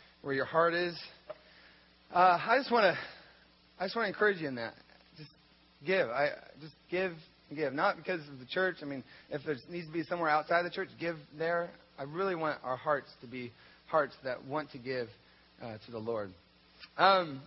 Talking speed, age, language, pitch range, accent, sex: 195 wpm, 30-49, English, 155-200 Hz, American, male